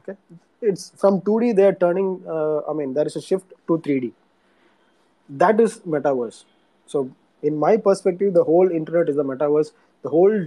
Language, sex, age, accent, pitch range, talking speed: English, male, 20-39, Indian, 140-175 Hz, 170 wpm